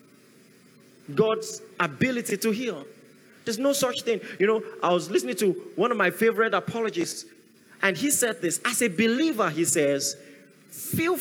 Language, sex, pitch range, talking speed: English, male, 215-320 Hz, 155 wpm